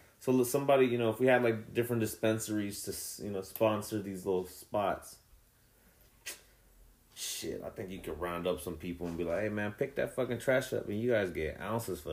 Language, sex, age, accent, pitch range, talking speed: English, male, 30-49, American, 85-110 Hz, 210 wpm